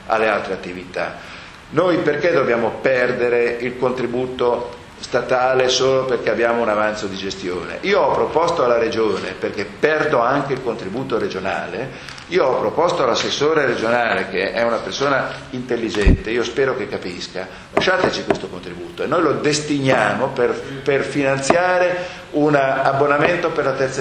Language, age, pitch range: Italian, 50-69, 110-150 Hz